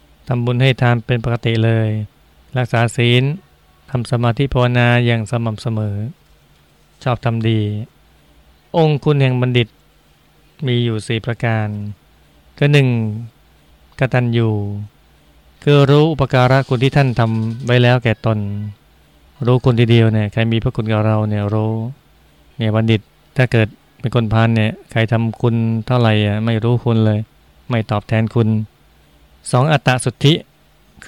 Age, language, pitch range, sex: 20-39, Thai, 105-125 Hz, male